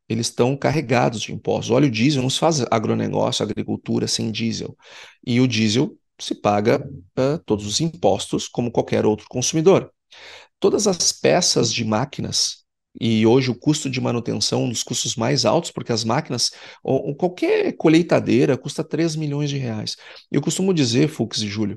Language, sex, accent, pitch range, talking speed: Portuguese, male, Brazilian, 115-140 Hz, 170 wpm